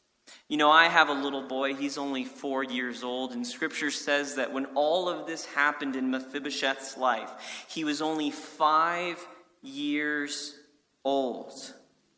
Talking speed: 150 wpm